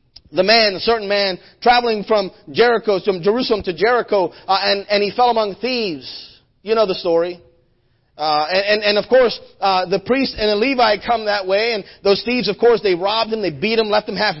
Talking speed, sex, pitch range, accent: 215 wpm, male, 180-275 Hz, American